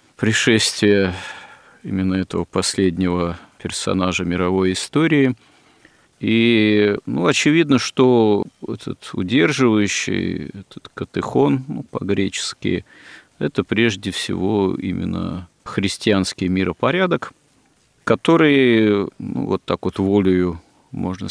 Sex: male